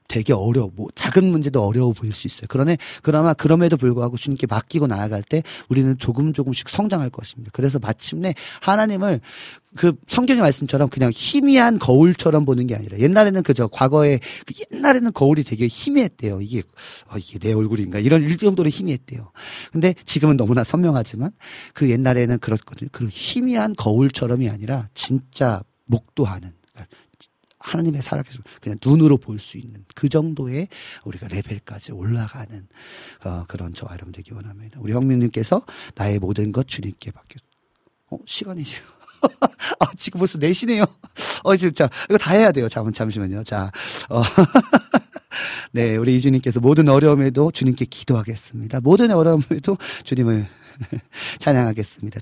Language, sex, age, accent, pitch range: Korean, male, 40-59, native, 110-155 Hz